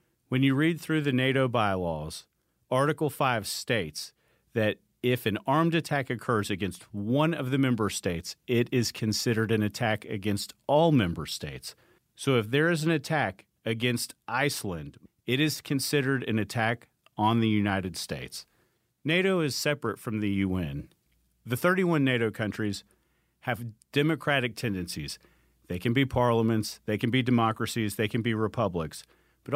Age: 40-59